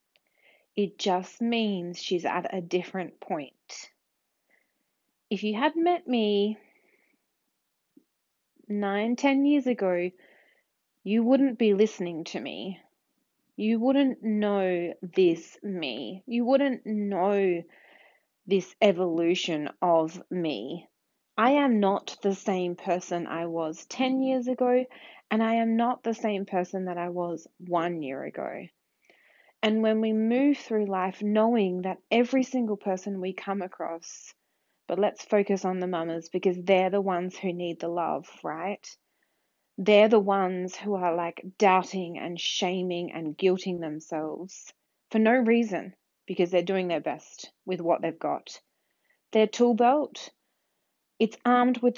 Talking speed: 135 wpm